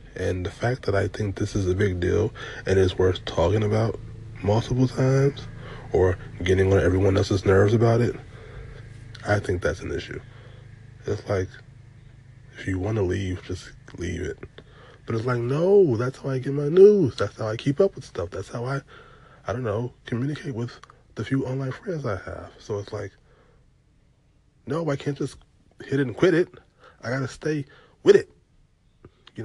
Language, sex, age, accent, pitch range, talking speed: English, male, 20-39, American, 95-130 Hz, 185 wpm